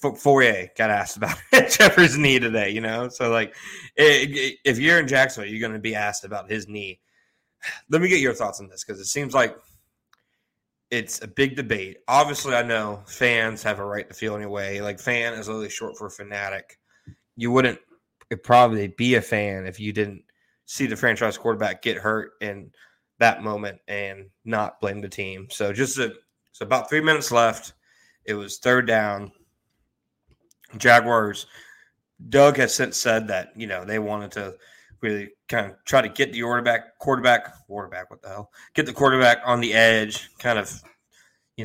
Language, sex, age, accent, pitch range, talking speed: English, male, 20-39, American, 105-125 Hz, 185 wpm